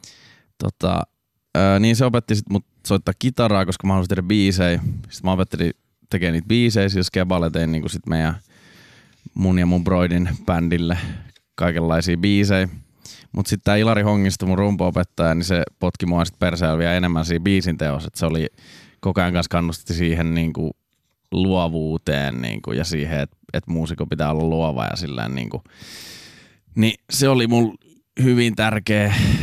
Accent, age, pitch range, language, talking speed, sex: native, 20-39, 85-100 Hz, Finnish, 150 wpm, male